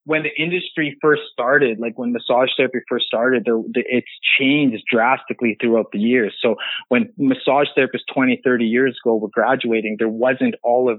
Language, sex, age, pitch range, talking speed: English, male, 30-49, 110-125 Hz, 165 wpm